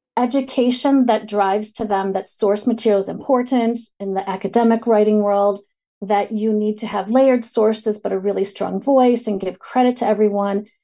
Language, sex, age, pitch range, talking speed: English, female, 30-49, 200-260 Hz, 175 wpm